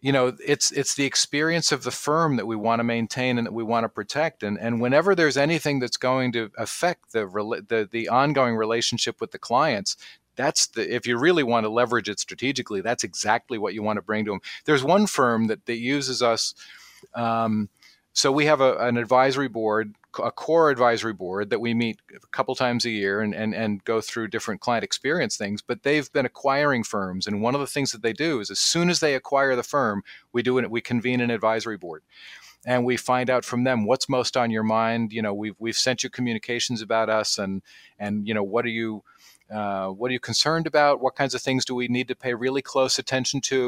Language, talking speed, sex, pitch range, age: English, 230 wpm, male, 115-135 Hz, 40-59